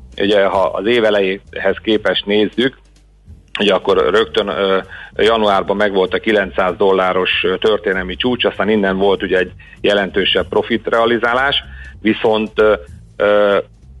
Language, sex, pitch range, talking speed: Hungarian, male, 95-110 Hz, 90 wpm